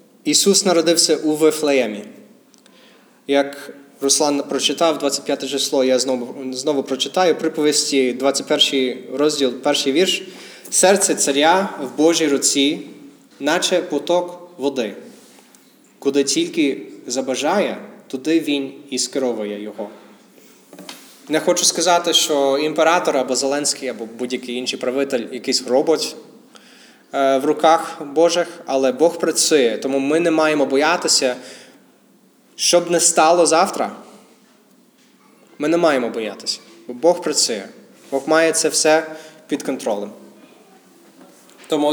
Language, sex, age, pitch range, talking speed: Ukrainian, male, 20-39, 135-175 Hz, 110 wpm